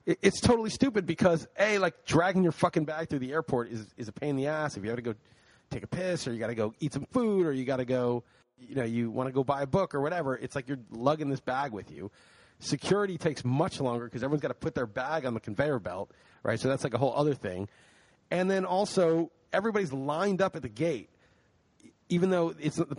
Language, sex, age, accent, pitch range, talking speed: English, male, 40-59, American, 135-180 Hz, 250 wpm